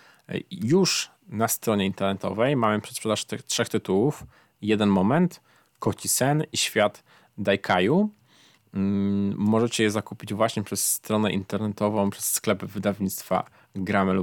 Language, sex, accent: Polish, male, native